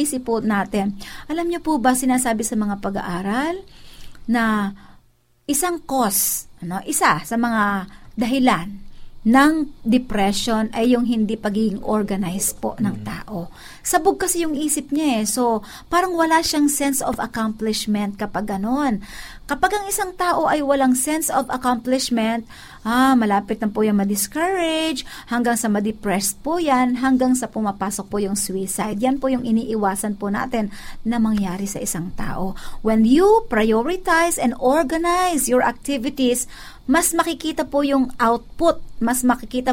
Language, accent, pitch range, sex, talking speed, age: Filipino, native, 215-285 Hz, female, 140 wpm, 50-69